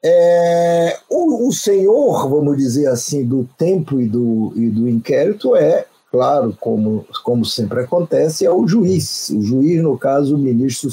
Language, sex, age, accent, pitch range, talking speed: Portuguese, male, 50-69, Brazilian, 115-170 Hz, 145 wpm